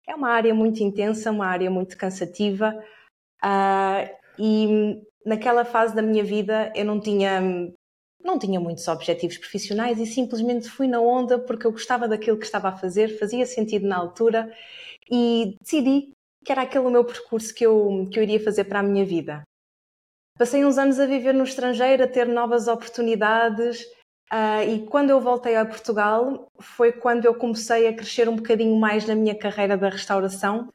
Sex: female